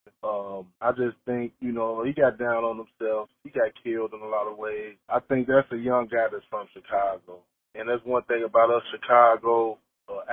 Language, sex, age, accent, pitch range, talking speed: English, male, 20-39, American, 115-140 Hz, 210 wpm